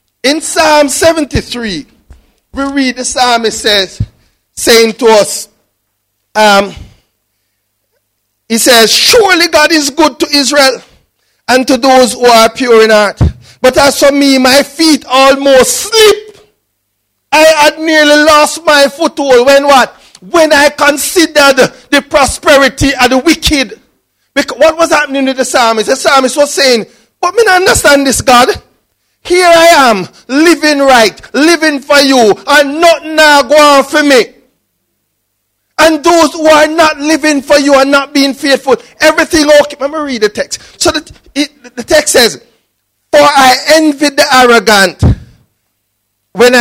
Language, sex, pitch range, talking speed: English, male, 230-305 Hz, 150 wpm